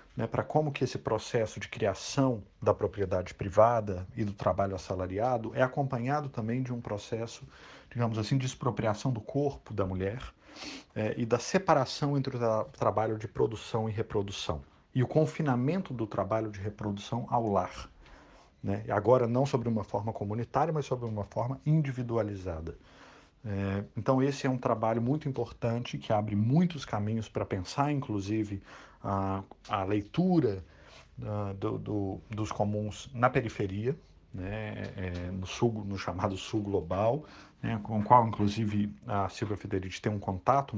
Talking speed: 155 wpm